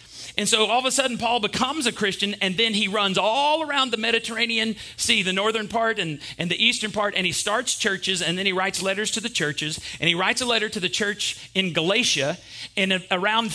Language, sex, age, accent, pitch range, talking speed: English, male, 40-59, American, 180-230 Hz, 230 wpm